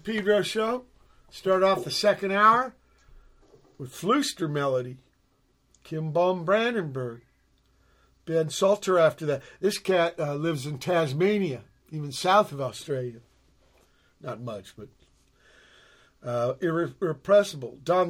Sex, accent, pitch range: male, American, 130-185 Hz